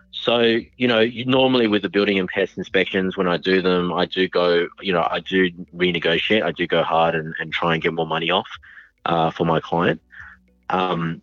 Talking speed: 215 wpm